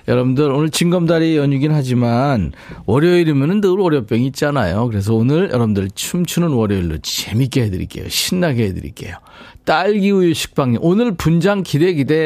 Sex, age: male, 40-59